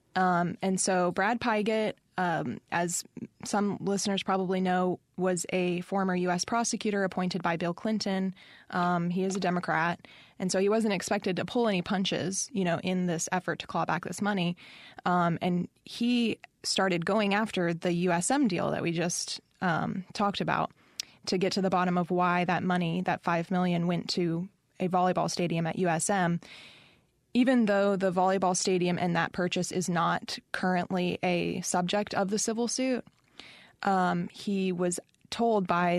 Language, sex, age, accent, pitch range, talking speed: English, female, 20-39, American, 175-200 Hz, 165 wpm